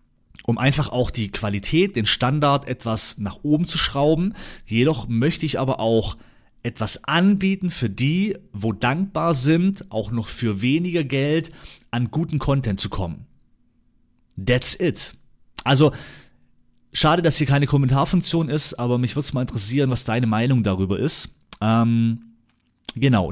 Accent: German